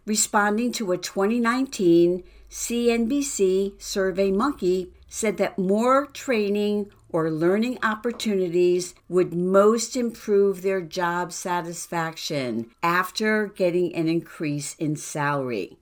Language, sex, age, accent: English, female, 60-79, American